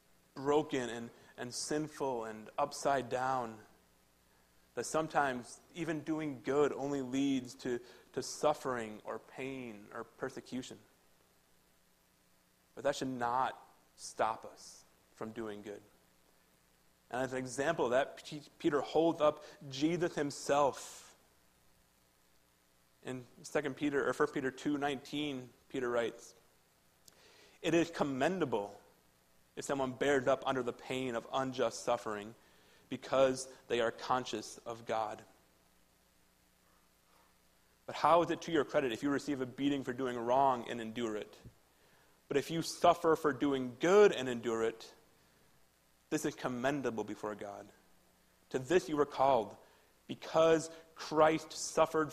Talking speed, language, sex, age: 125 wpm, English, male, 30-49